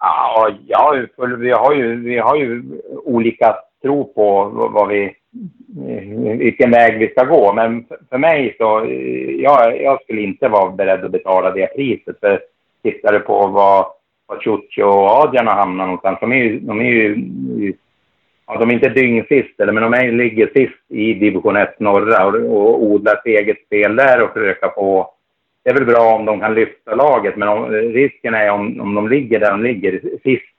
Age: 60-79